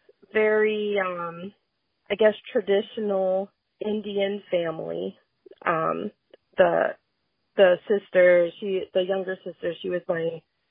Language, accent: English, American